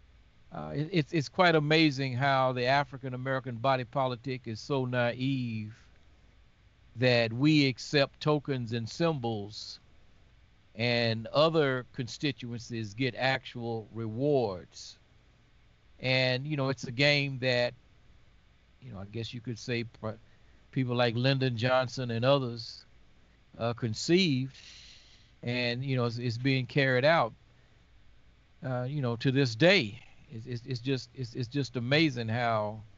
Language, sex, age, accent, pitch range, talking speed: English, male, 50-69, American, 110-135 Hz, 130 wpm